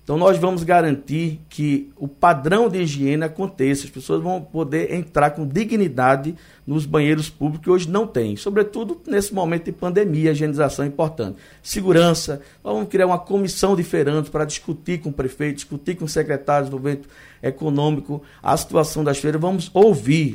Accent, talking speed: Brazilian, 170 wpm